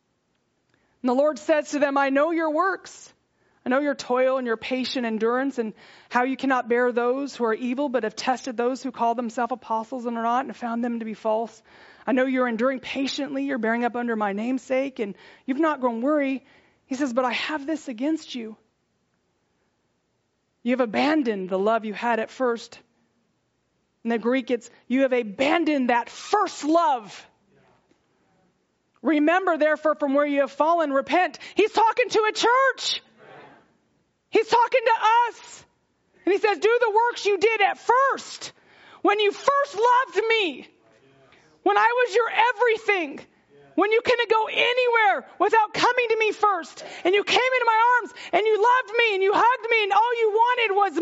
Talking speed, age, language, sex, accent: 180 wpm, 30-49, English, female, American